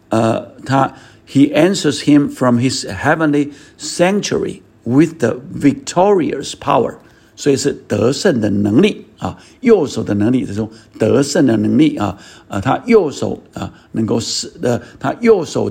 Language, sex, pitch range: Chinese, male, 110-145 Hz